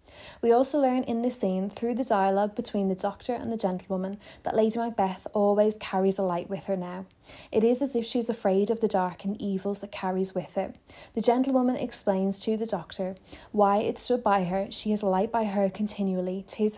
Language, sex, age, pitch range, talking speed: English, female, 20-39, 190-220 Hz, 215 wpm